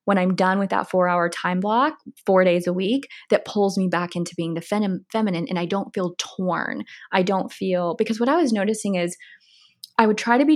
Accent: American